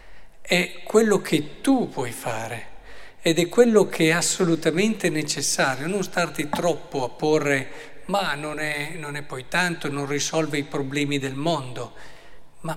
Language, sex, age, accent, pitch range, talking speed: Italian, male, 50-69, native, 140-170 Hz, 145 wpm